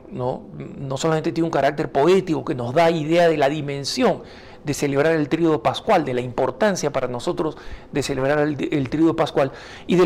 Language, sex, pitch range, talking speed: Spanish, male, 140-185 Hz, 190 wpm